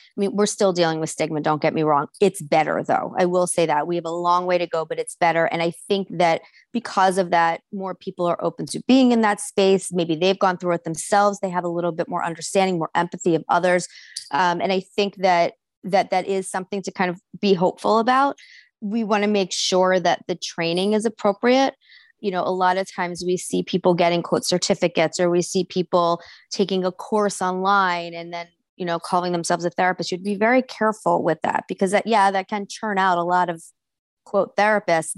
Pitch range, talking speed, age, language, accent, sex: 175-205 Hz, 225 wpm, 20-39, English, American, female